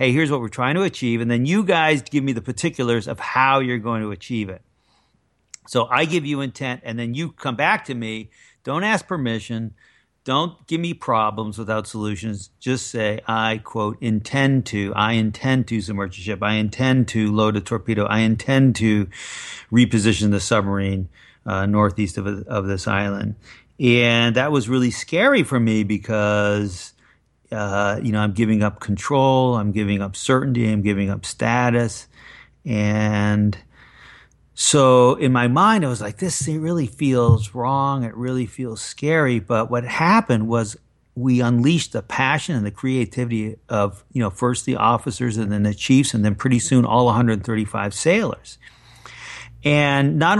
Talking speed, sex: 170 wpm, male